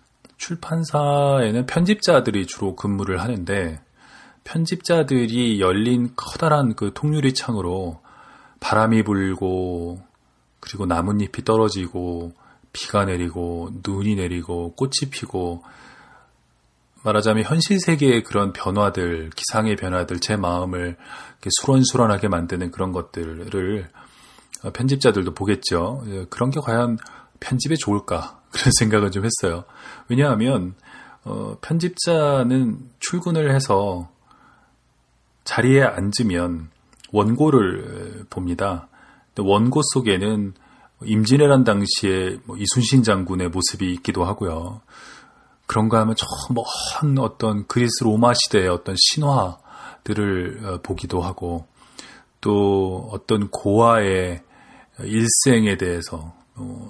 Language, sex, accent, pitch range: Korean, male, native, 90-125 Hz